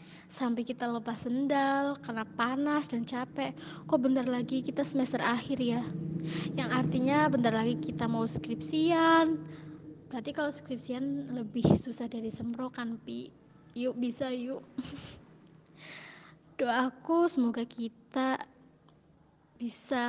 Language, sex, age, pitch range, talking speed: Indonesian, female, 20-39, 225-275 Hz, 115 wpm